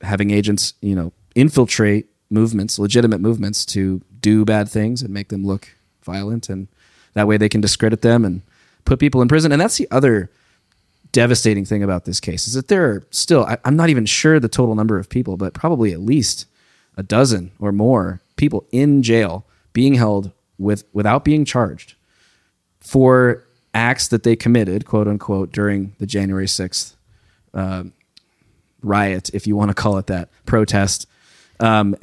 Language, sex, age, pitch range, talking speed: English, male, 20-39, 100-130 Hz, 170 wpm